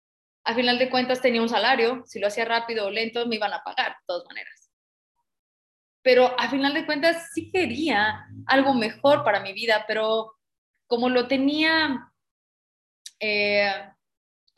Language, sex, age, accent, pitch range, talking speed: Spanish, female, 20-39, Mexican, 205-270 Hz, 150 wpm